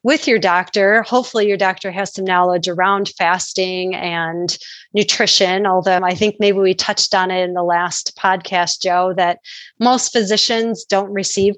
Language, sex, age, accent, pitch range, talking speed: English, female, 30-49, American, 185-220 Hz, 160 wpm